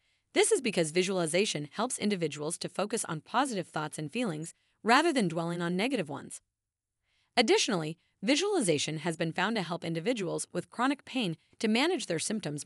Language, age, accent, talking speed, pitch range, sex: English, 30-49, American, 160 wpm, 160-240 Hz, female